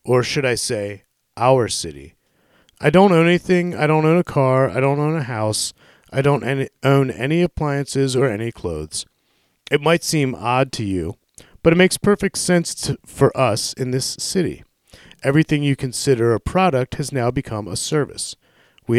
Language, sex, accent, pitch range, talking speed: English, male, American, 110-150 Hz, 175 wpm